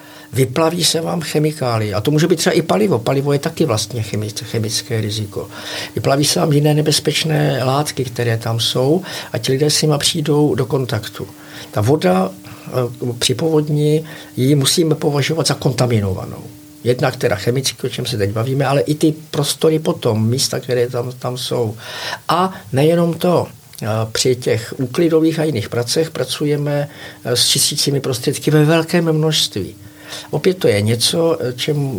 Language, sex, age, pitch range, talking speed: Czech, male, 50-69, 120-160 Hz, 155 wpm